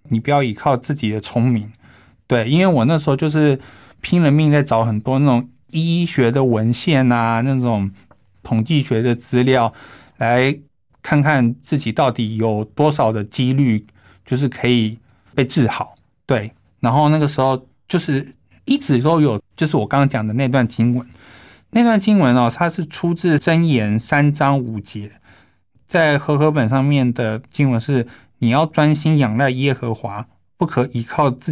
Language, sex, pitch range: Chinese, male, 115-145 Hz